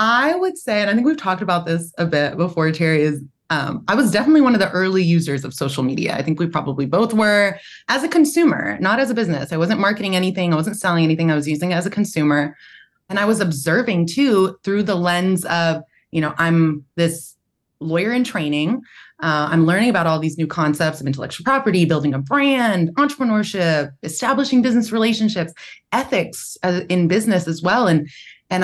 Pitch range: 160-205 Hz